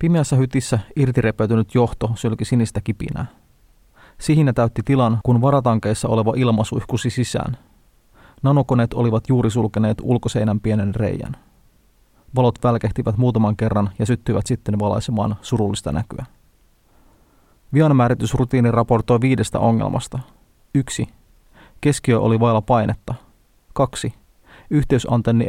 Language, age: Finnish, 30-49